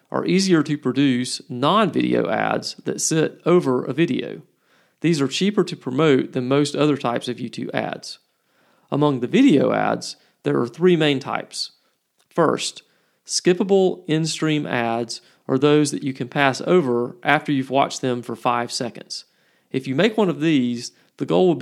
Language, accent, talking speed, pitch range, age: English, American, 165 wpm, 125-155 Hz, 40-59